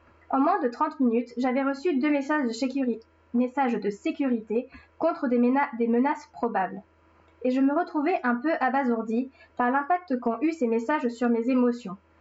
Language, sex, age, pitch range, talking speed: French, female, 10-29, 235-280 Hz, 150 wpm